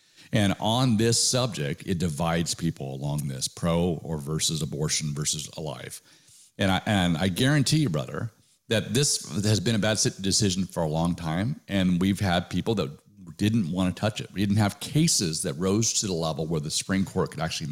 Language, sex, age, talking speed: English, male, 50-69, 195 wpm